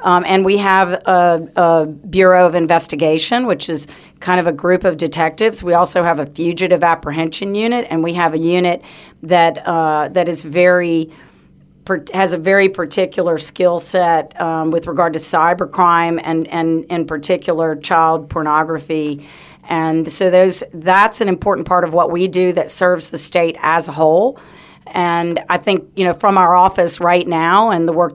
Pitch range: 160-180 Hz